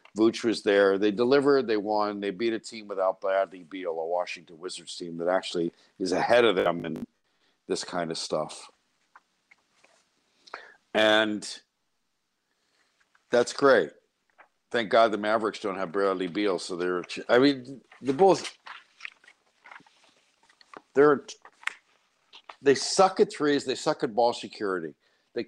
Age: 60-79